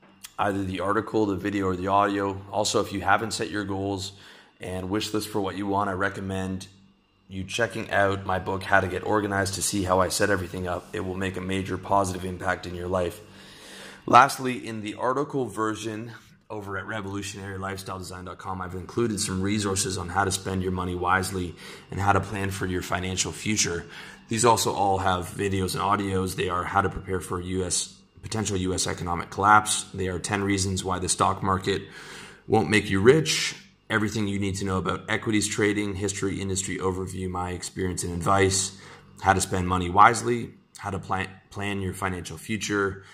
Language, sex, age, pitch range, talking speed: English, male, 30-49, 90-100 Hz, 185 wpm